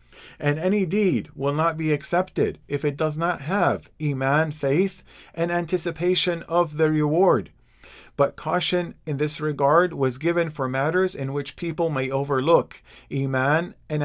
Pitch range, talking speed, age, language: 140-175 Hz, 150 wpm, 50-69, English